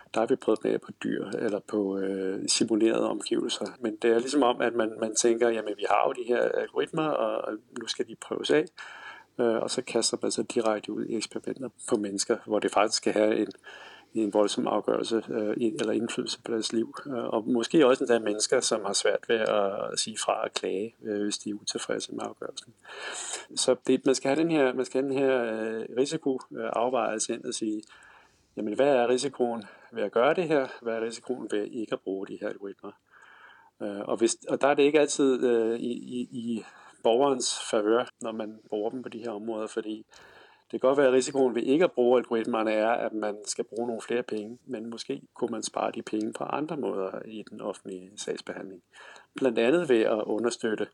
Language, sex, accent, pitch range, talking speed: Danish, male, native, 105-125 Hz, 210 wpm